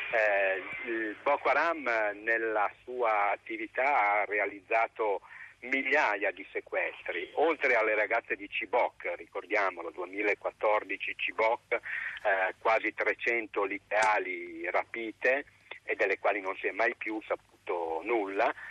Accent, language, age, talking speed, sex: native, Italian, 50-69, 110 wpm, male